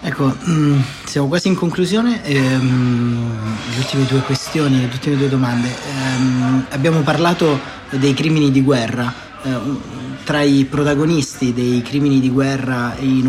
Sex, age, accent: male, 30-49, native